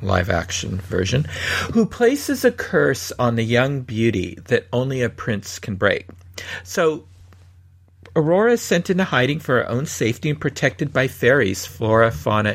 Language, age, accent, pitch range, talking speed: English, 50-69, American, 100-155 Hz, 160 wpm